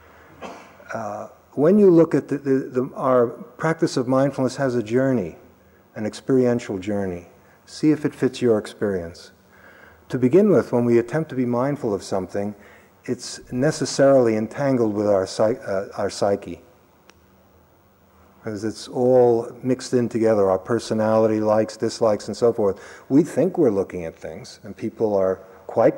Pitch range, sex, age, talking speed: 95-125 Hz, male, 50-69, 145 wpm